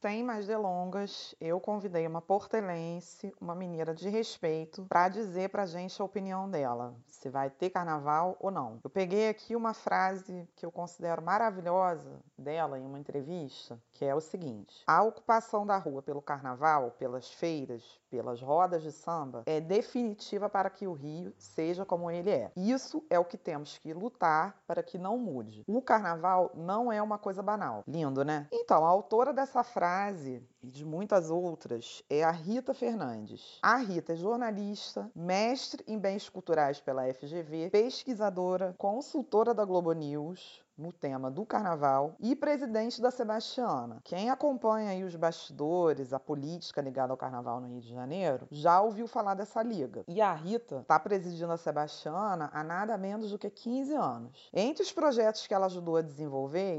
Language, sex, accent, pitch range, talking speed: Portuguese, female, Brazilian, 155-210 Hz, 170 wpm